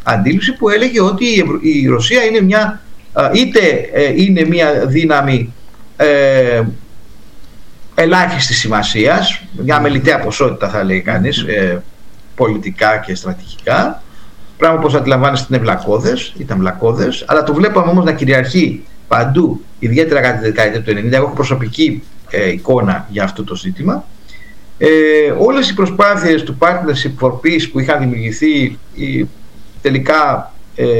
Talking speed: 130 wpm